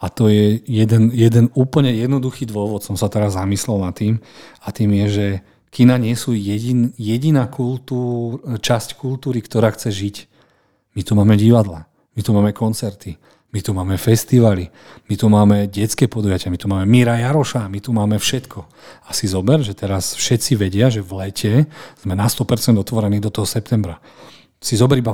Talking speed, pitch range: 175 wpm, 105-125 Hz